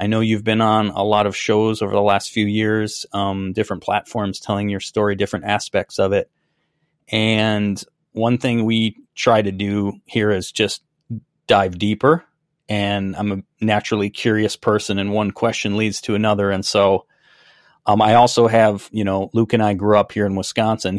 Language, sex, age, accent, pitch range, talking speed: English, male, 30-49, American, 100-115 Hz, 185 wpm